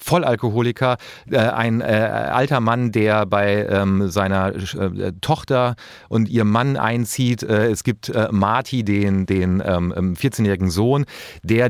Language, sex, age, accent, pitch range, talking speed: German, male, 40-59, German, 105-125 Hz, 105 wpm